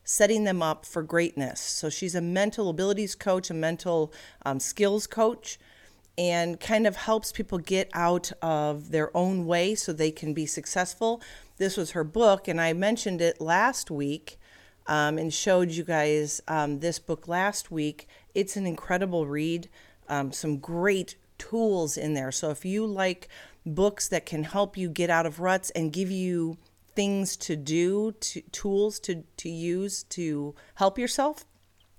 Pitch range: 155-190 Hz